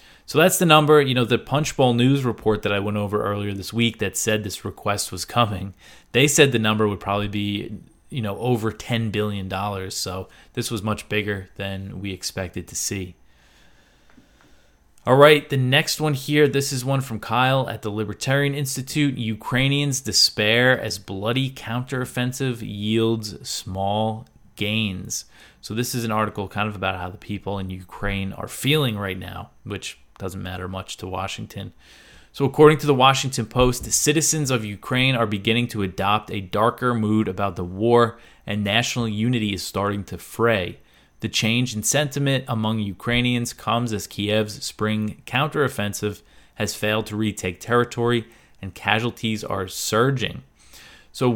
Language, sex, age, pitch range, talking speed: English, male, 20-39, 100-125 Hz, 160 wpm